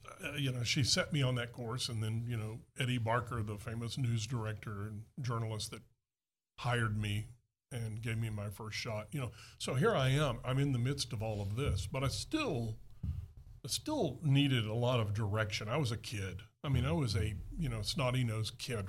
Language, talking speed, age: English, 215 wpm, 50-69